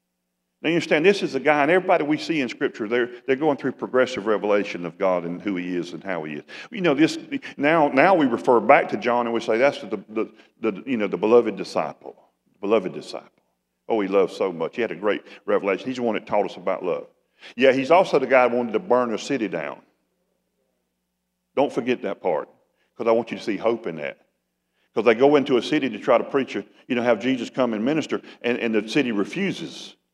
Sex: male